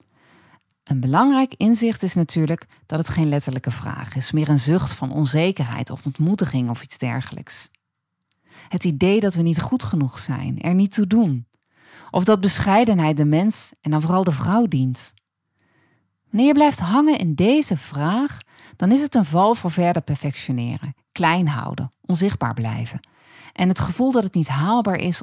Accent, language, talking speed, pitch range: Dutch, Dutch, 170 wpm, 135-210 Hz